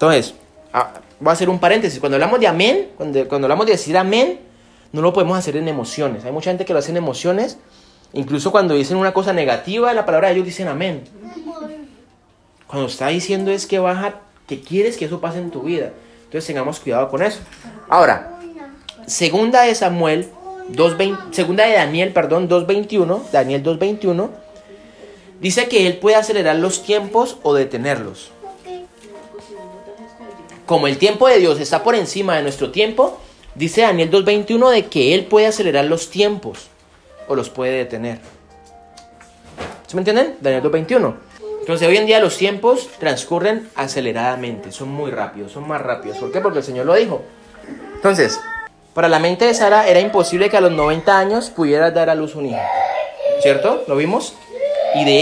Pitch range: 150-220 Hz